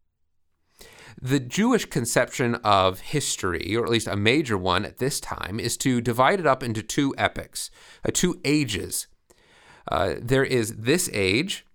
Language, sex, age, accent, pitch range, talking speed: English, male, 30-49, American, 115-155 Hz, 155 wpm